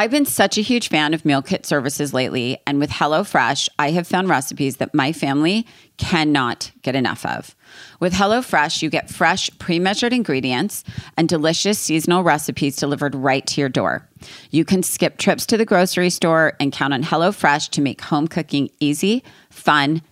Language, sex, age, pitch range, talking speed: English, female, 30-49, 140-180 Hz, 175 wpm